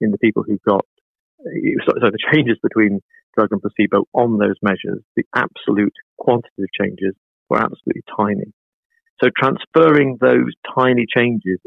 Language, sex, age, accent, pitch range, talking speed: English, male, 40-59, British, 100-125 Hz, 140 wpm